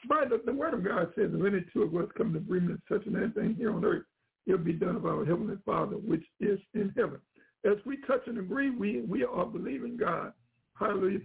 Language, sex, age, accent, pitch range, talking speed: English, male, 60-79, American, 185-225 Hz, 230 wpm